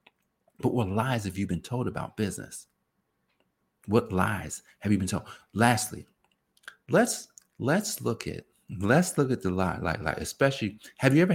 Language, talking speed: English, 165 wpm